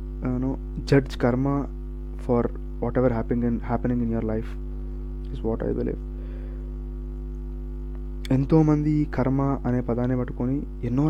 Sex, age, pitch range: male, 20-39, 85-130 Hz